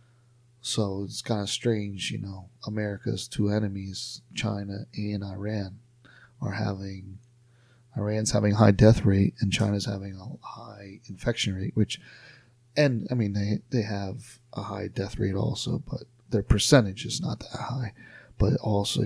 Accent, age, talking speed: American, 40-59, 150 wpm